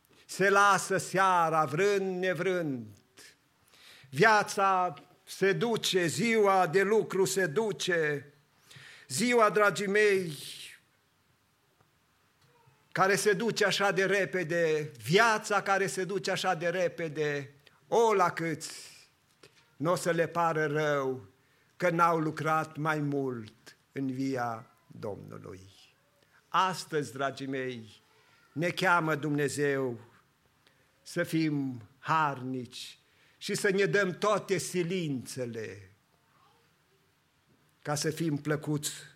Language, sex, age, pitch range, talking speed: English, male, 50-69, 135-185 Hz, 100 wpm